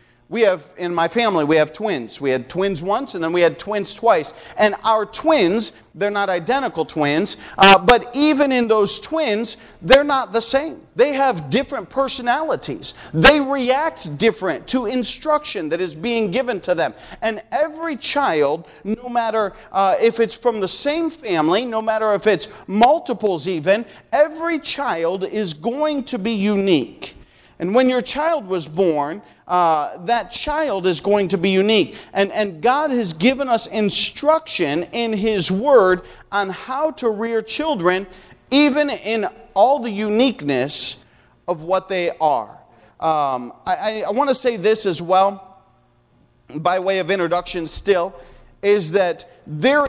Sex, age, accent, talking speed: male, 40-59, American, 155 wpm